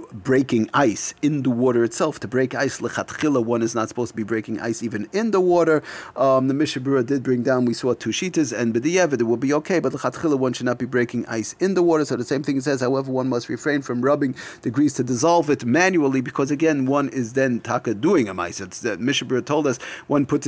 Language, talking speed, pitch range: English, 235 wpm, 115-140 Hz